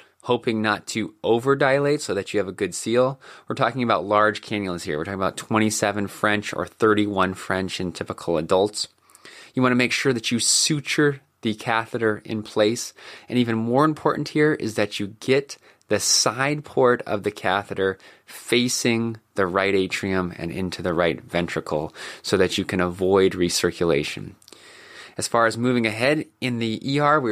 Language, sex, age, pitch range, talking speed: English, male, 20-39, 95-120 Hz, 175 wpm